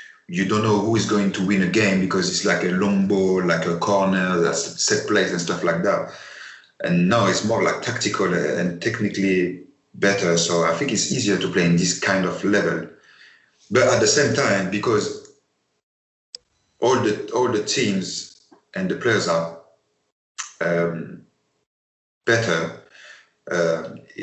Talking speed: 160 wpm